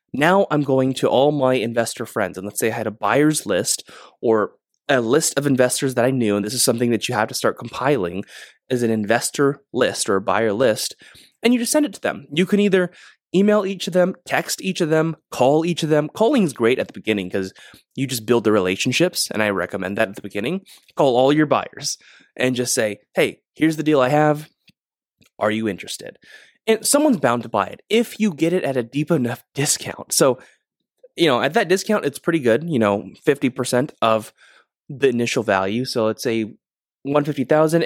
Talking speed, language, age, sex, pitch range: 210 wpm, English, 20-39, male, 110-150 Hz